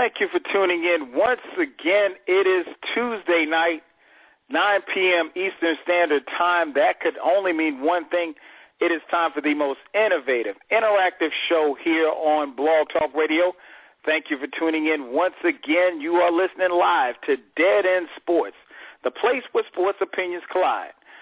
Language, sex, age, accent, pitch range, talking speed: English, male, 40-59, American, 155-205 Hz, 160 wpm